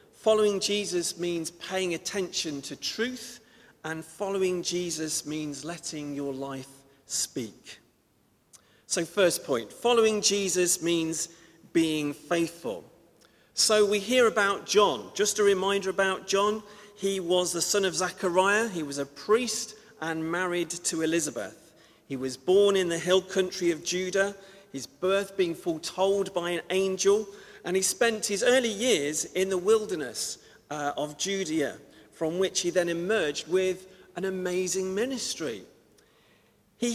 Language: English